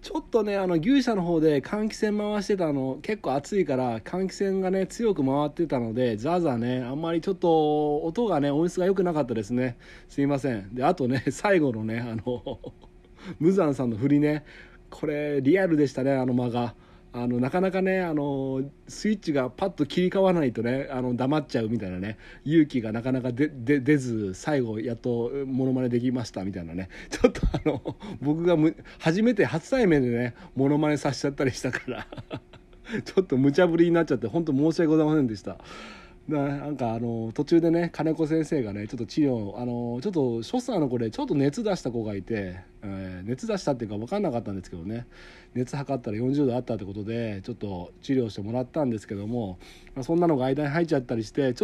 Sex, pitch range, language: male, 120-160 Hz, Japanese